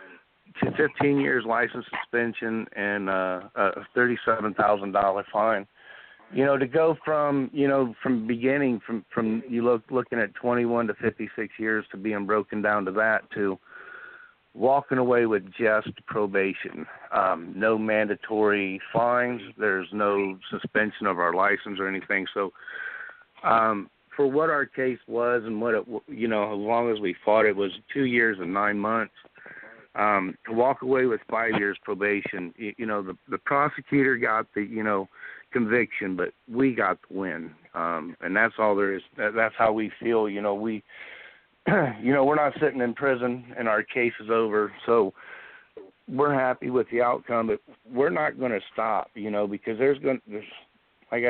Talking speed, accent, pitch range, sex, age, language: 175 wpm, American, 105-125 Hz, male, 50-69, English